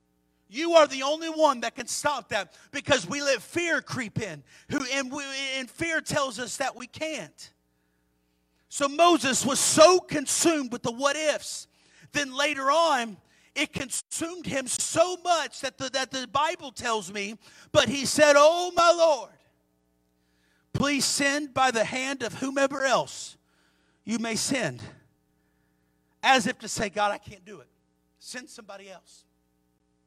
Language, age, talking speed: English, 40-59, 150 wpm